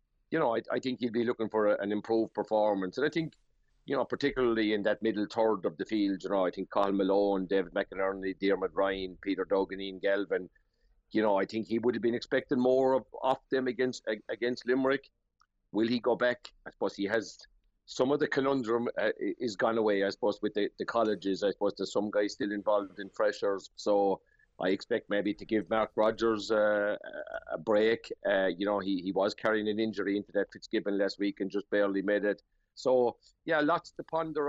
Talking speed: 210 wpm